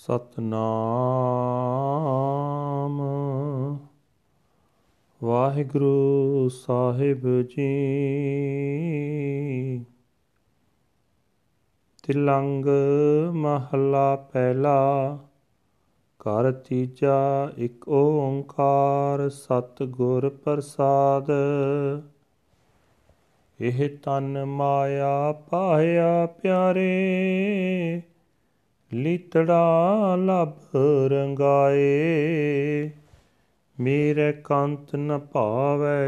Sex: male